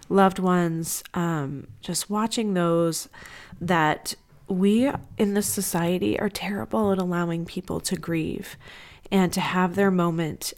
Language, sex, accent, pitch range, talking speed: English, female, American, 180-210 Hz, 130 wpm